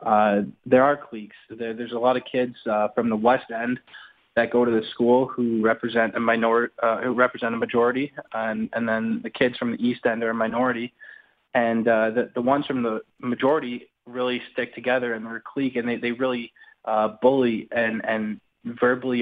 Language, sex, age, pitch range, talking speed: English, male, 20-39, 115-130 Hz, 195 wpm